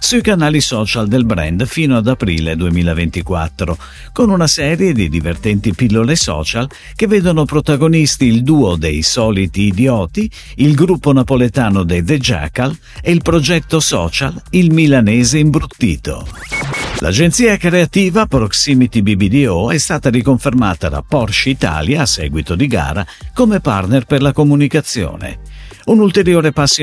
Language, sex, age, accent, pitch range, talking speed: Italian, male, 50-69, native, 95-150 Hz, 130 wpm